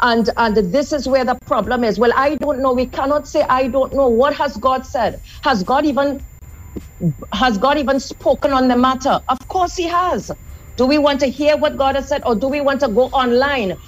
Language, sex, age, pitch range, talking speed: English, female, 50-69, 240-280 Hz, 225 wpm